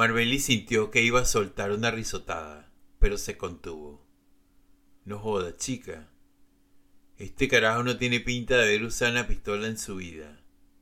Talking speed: 150 wpm